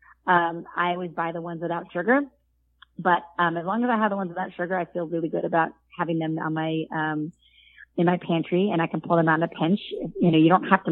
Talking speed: 260 wpm